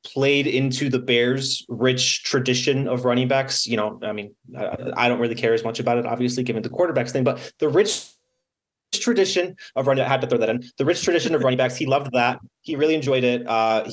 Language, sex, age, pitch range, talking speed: English, male, 20-39, 120-155 Hz, 230 wpm